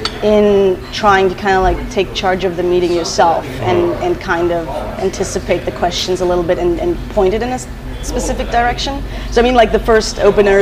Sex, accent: female, American